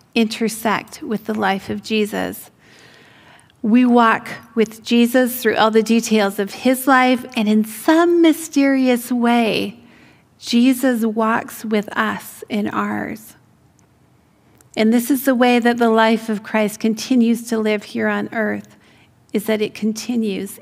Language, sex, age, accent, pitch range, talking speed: English, female, 40-59, American, 215-245 Hz, 140 wpm